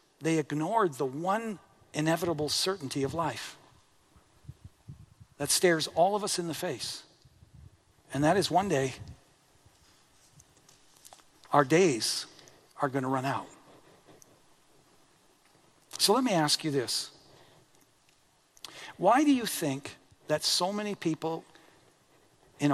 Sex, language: male, English